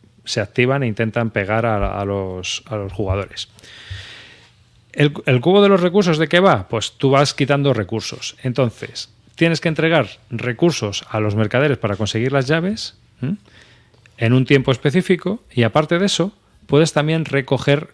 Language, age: Spanish, 30-49